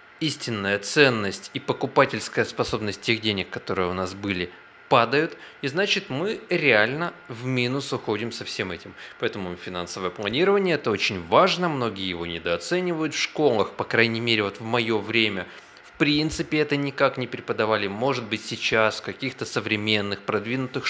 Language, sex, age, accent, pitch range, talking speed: Russian, male, 20-39, native, 105-140 Hz, 155 wpm